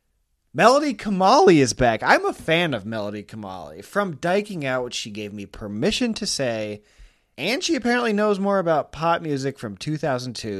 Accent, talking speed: American, 170 wpm